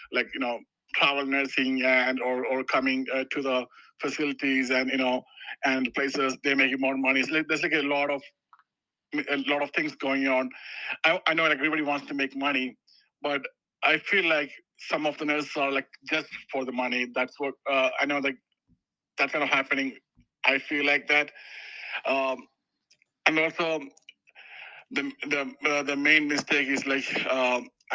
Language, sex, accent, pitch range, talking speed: English, male, Indian, 130-145 Hz, 180 wpm